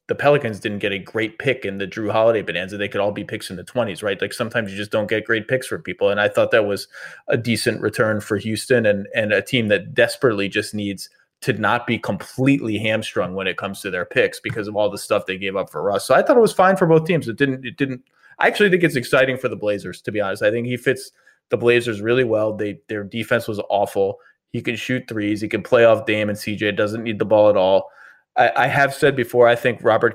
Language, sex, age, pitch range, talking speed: English, male, 20-39, 105-130 Hz, 260 wpm